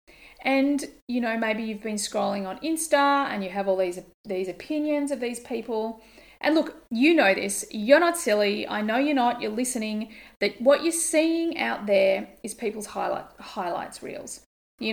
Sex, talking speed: female, 180 wpm